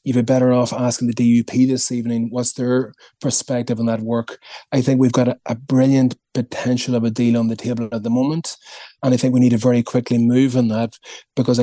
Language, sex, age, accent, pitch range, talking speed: English, male, 30-49, Irish, 120-130 Hz, 225 wpm